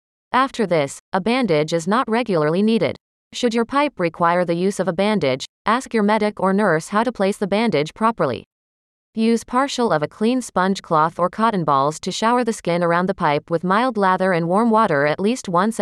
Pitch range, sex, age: 165-225 Hz, female, 30-49